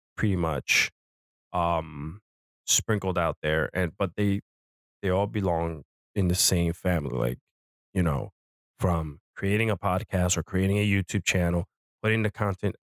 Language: English